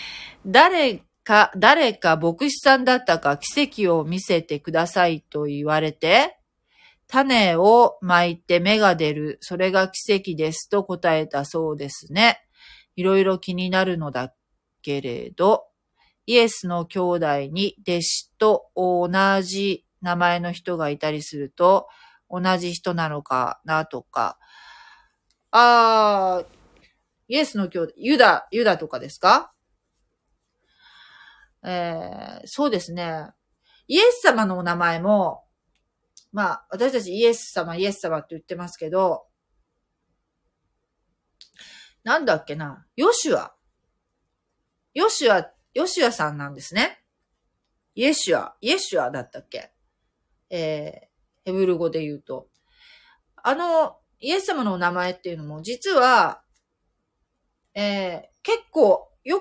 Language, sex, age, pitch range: Japanese, female, 40-59, 160-225 Hz